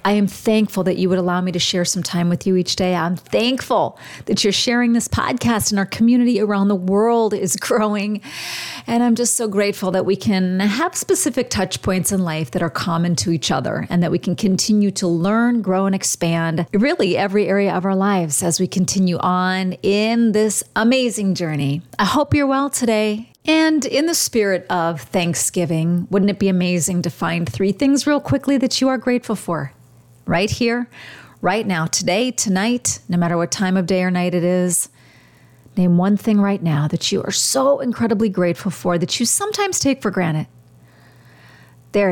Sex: female